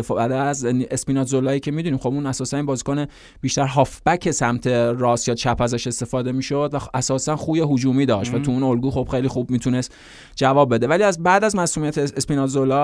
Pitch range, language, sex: 125-150 Hz, Persian, male